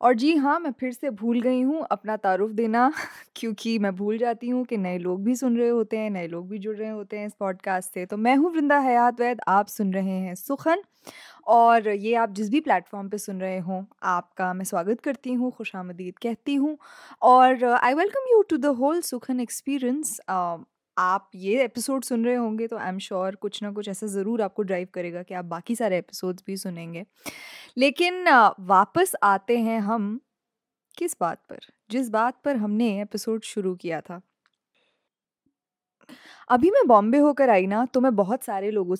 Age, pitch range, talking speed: 20-39, 195-255 Hz, 190 wpm